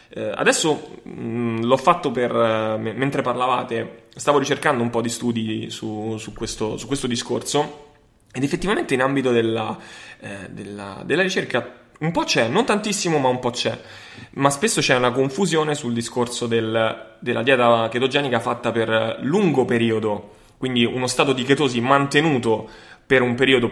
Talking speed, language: 150 wpm, Italian